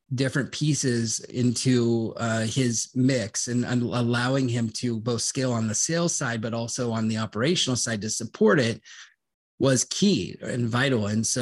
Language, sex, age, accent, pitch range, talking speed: English, male, 30-49, American, 115-135 Hz, 170 wpm